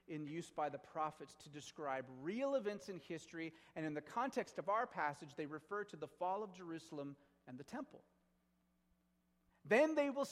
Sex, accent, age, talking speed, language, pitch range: male, American, 30-49, 180 wpm, English, 160-220 Hz